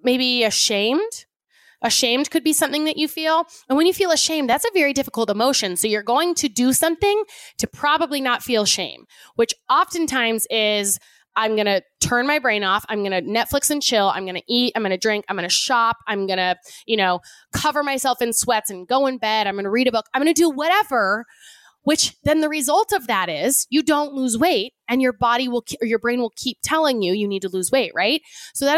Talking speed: 235 wpm